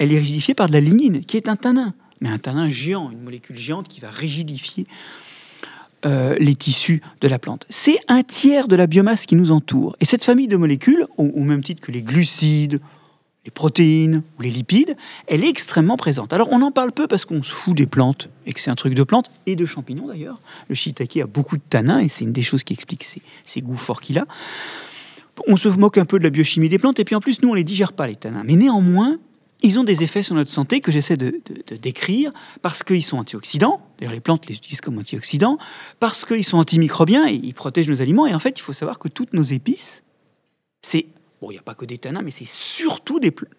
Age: 40-59